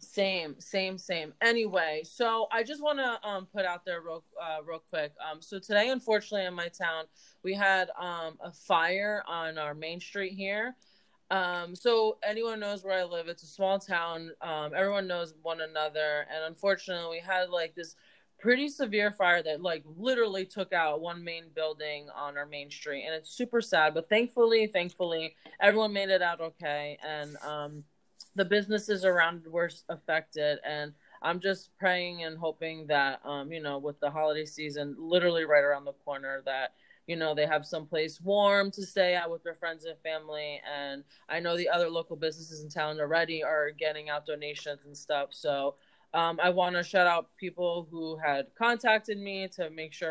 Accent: American